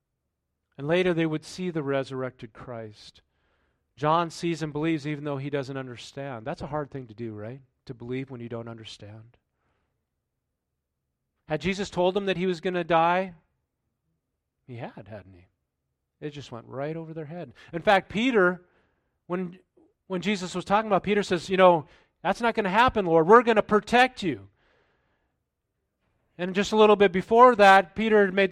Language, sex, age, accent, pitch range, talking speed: English, male, 40-59, American, 125-180 Hz, 175 wpm